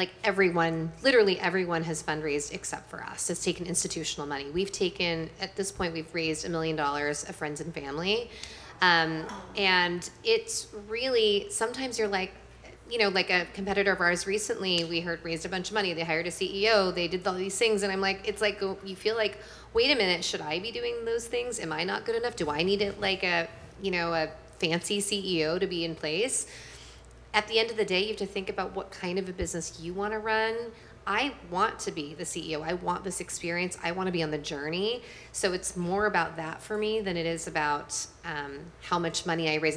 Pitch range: 160-205 Hz